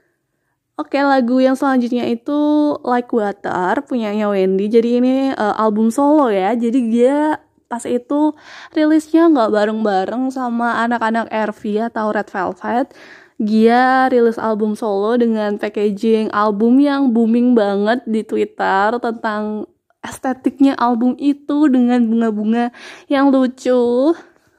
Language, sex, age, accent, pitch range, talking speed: Indonesian, female, 20-39, native, 225-285 Hz, 115 wpm